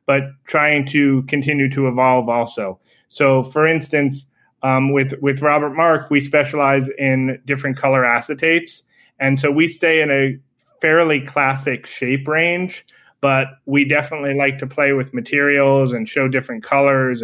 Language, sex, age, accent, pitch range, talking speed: English, male, 30-49, American, 130-150 Hz, 150 wpm